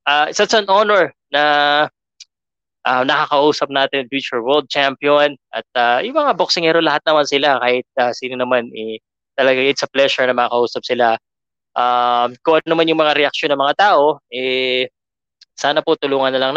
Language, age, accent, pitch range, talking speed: Filipino, 20-39, native, 130-175 Hz, 180 wpm